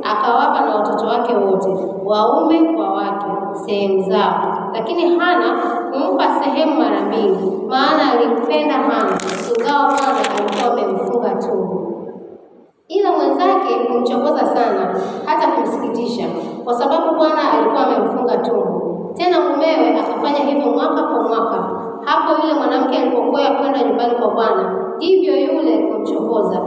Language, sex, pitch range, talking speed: Swahili, female, 235-330 Hz, 120 wpm